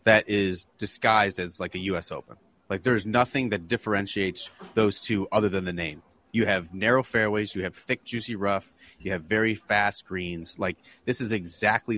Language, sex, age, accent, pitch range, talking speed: English, male, 30-49, American, 95-115 Hz, 185 wpm